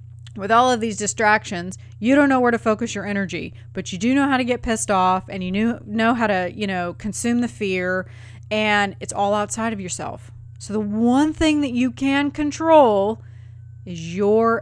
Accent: American